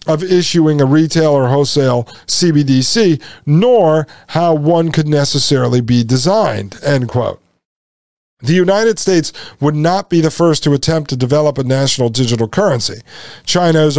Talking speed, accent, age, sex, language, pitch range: 145 wpm, American, 50-69, male, English, 135-165 Hz